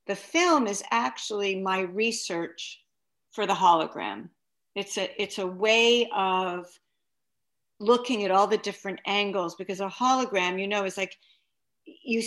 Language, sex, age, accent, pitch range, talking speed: English, female, 50-69, American, 185-230 Hz, 140 wpm